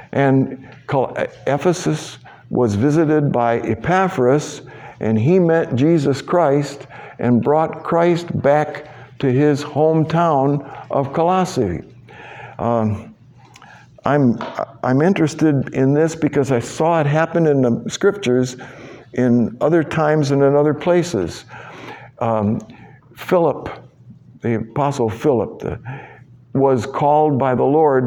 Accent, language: American, English